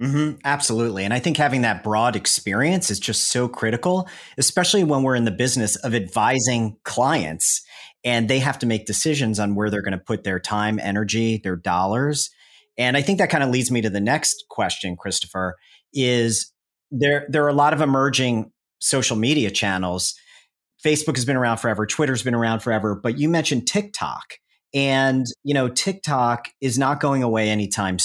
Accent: American